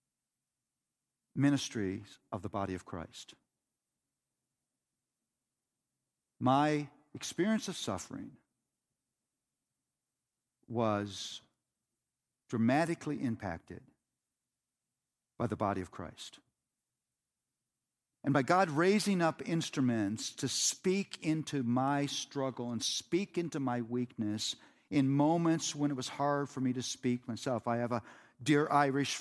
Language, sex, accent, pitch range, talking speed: English, male, American, 120-145 Hz, 105 wpm